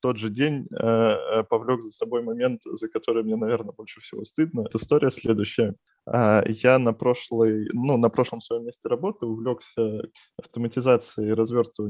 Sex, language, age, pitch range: male, Russian, 20-39, 105-120 Hz